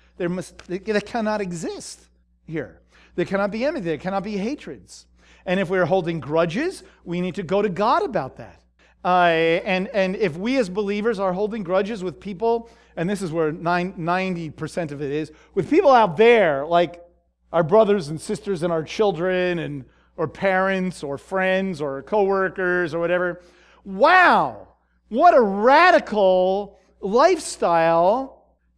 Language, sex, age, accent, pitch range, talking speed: English, male, 40-59, American, 175-230 Hz, 160 wpm